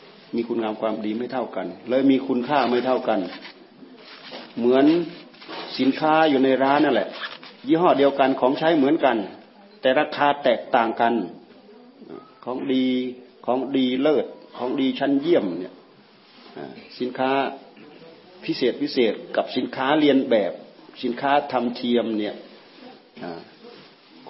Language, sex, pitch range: Thai, male, 120-140 Hz